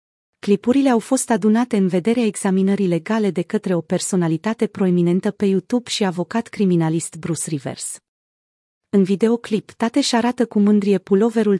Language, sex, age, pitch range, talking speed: Romanian, female, 30-49, 180-220 Hz, 145 wpm